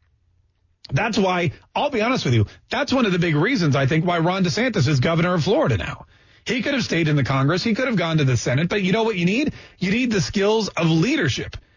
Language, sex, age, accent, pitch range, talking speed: English, male, 40-59, American, 140-220 Hz, 250 wpm